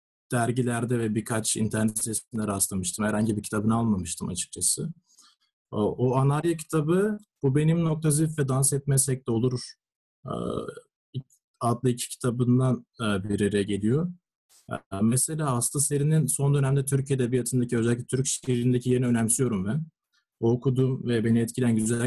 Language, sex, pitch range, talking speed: Turkish, male, 115-150 Hz, 125 wpm